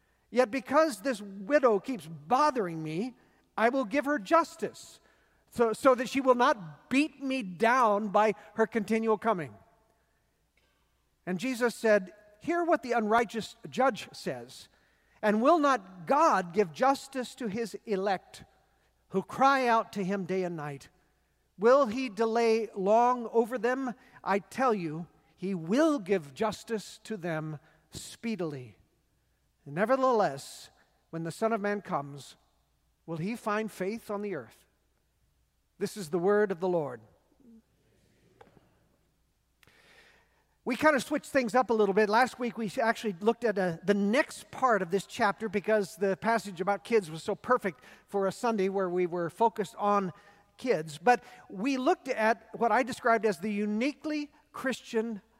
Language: English